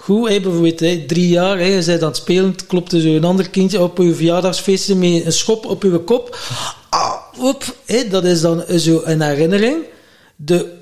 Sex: male